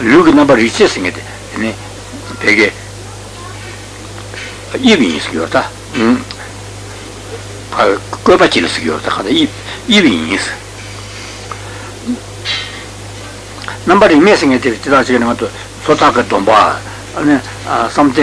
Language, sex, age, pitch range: Italian, male, 60-79, 100-120 Hz